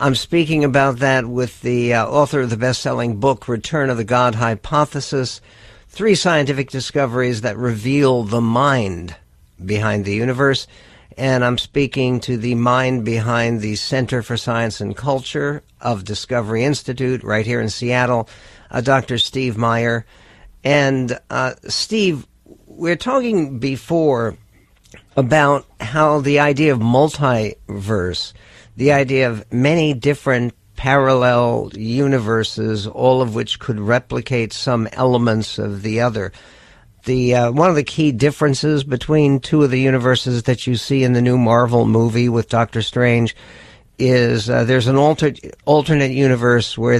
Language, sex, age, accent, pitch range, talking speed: English, male, 60-79, American, 115-135 Hz, 140 wpm